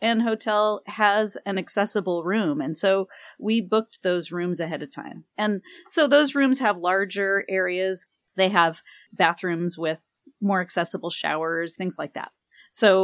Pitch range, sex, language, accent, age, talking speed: 175-230 Hz, female, English, American, 40-59, 150 wpm